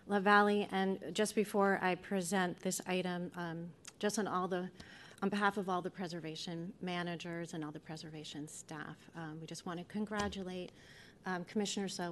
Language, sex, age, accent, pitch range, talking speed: English, female, 30-49, American, 170-205 Hz, 175 wpm